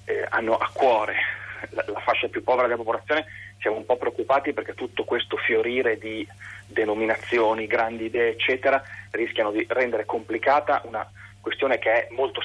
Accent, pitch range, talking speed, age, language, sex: native, 105-160 Hz, 160 wpm, 40-59, Italian, male